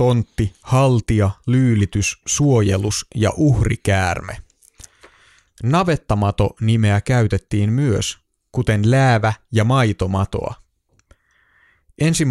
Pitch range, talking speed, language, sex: 100-125 Hz, 70 wpm, Finnish, male